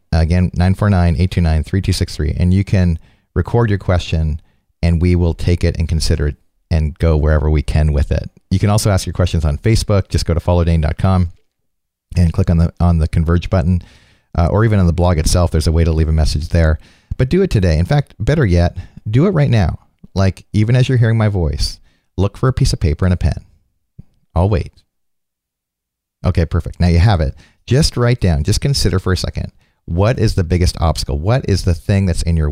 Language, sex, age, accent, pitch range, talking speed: English, male, 40-59, American, 80-105 Hz, 210 wpm